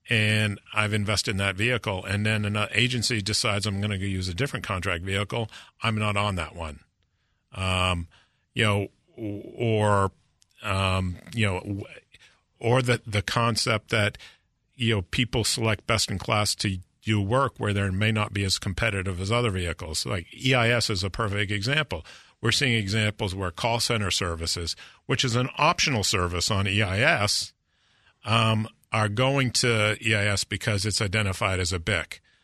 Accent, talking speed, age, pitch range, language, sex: American, 160 wpm, 50-69, 95-120 Hz, English, male